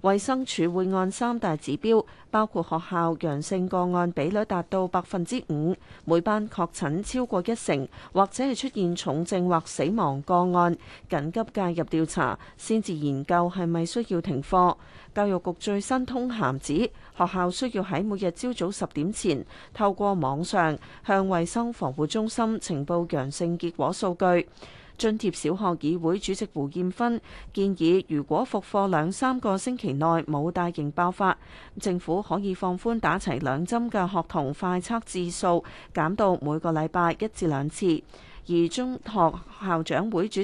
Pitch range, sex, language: 165-210 Hz, female, Chinese